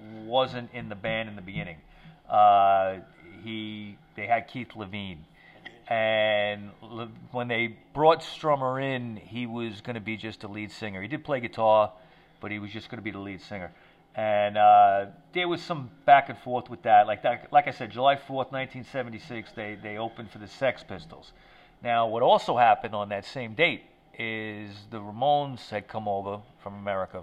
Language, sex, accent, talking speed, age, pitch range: English, male, American, 185 wpm, 40-59, 100-120 Hz